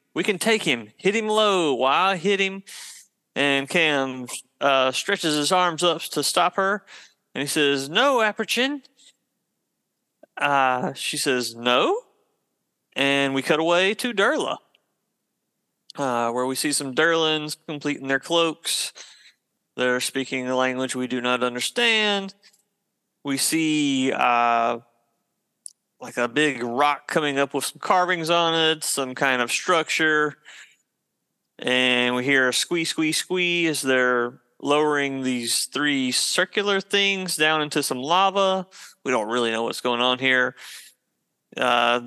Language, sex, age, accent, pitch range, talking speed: English, male, 30-49, American, 130-175 Hz, 140 wpm